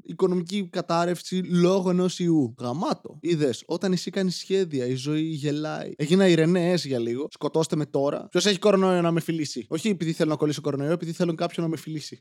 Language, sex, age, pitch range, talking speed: Greek, male, 20-39, 135-175 Hz, 185 wpm